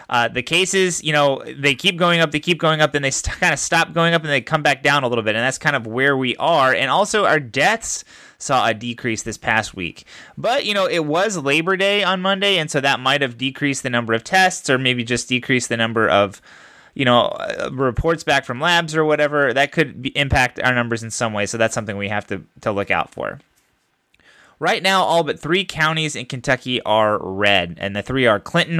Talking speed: 240 wpm